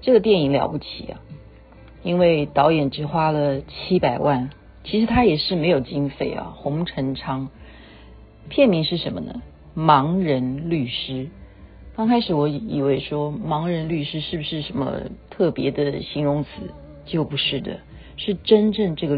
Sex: female